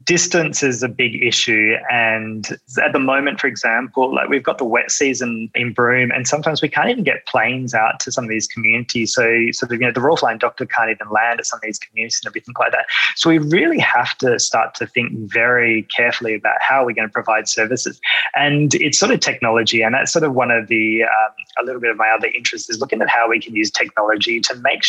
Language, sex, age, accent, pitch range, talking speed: English, male, 20-39, Australian, 110-130 Hz, 245 wpm